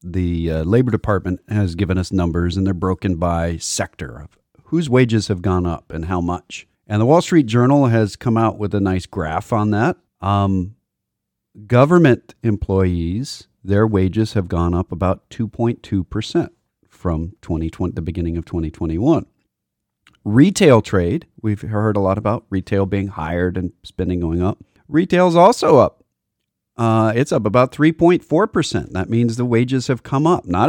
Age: 40-59